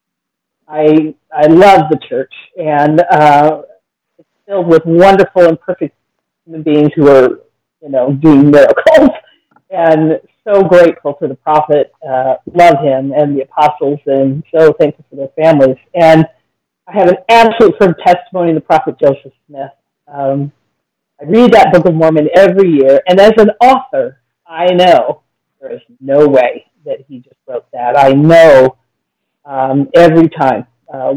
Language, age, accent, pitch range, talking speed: English, 40-59, American, 140-185 Hz, 155 wpm